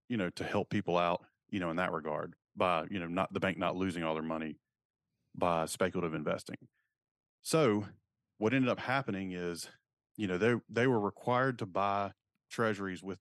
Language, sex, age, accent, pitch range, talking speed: English, male, 30-49, American, 95-115 Hz, 185 wpm